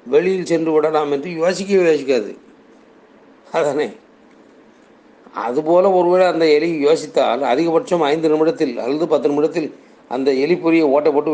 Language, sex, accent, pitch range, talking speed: Tamil, male, native, 140-165 Hz, 115 wpm